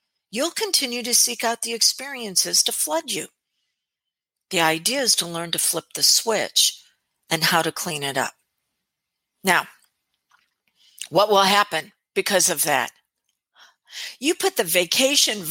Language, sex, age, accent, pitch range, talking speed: English, female, 50-69, American, 180-255 Hz, 140 wpm